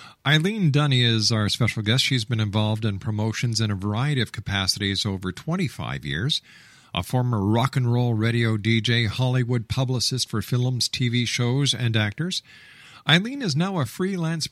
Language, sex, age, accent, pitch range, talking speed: English, male, 50-69, American, 105-130 Hz, 160 wpm